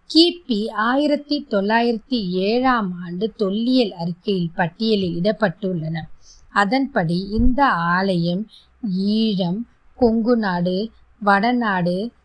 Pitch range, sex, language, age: 195-265 Hz, female, Tamil, 20-39